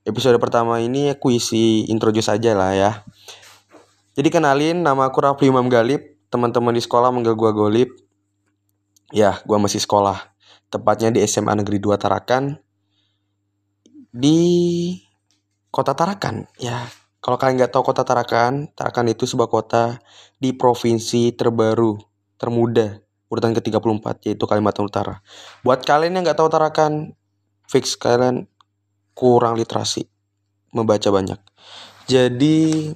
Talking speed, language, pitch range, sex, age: 120 wpm, Indonesian, 105-130 Hz, male, 20-39